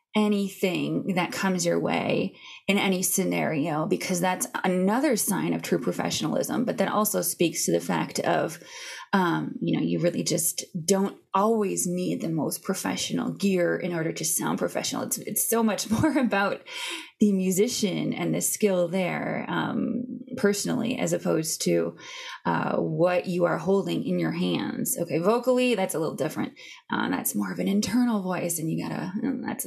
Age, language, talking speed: 20-39, English, 165 wpm